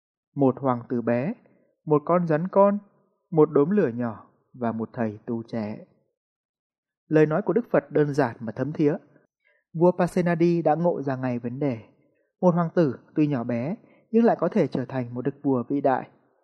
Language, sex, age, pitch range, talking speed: Vietnamese, male, 20-39, 125-180 Hz, 190 wpm